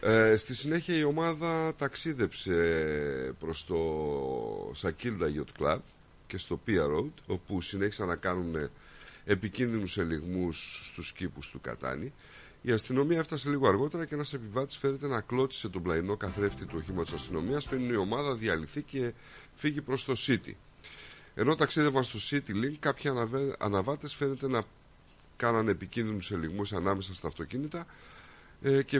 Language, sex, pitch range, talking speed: Greek, male, 95-140 Hz, 140 wpm